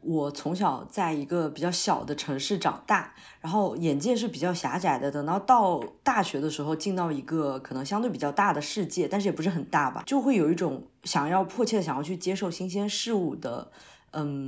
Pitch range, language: 150-205 Hz, Chinese